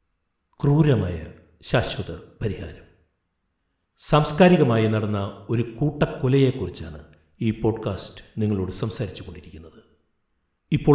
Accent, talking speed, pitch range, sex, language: native, 70 wpm, 95-135 Hz, male, Malayalam